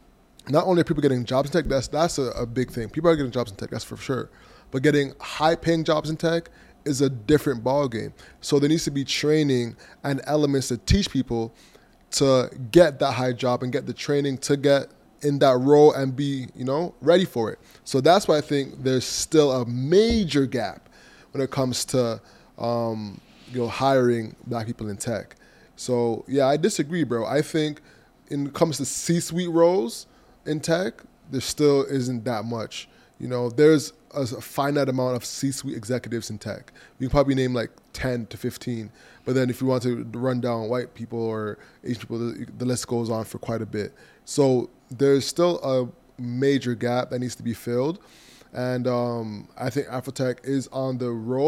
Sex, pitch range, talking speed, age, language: male, 120-145 Hz, 195 wpm, 20-39, English